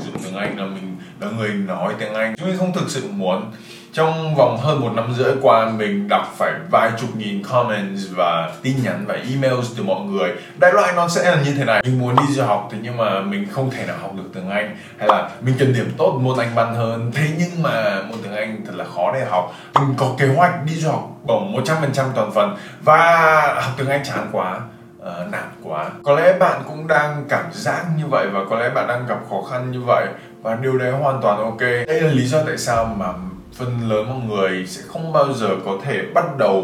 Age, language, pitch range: 20-39, Vietnamese, 110-150 Hz